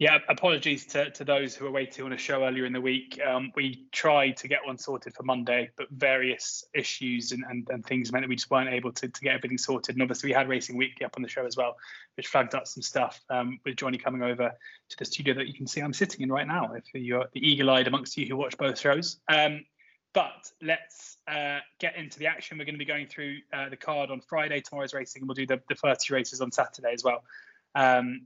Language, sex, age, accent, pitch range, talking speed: English, male, 20-39, British, 130-150 Hz, 255 wpm